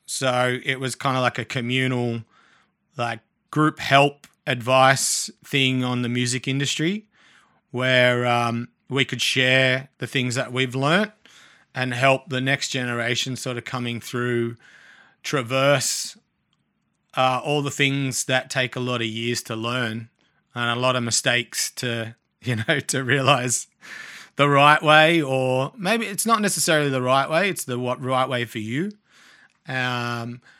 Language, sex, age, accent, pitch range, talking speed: English, male, 30-49, Australian, 125-160 Hz, 150 wpm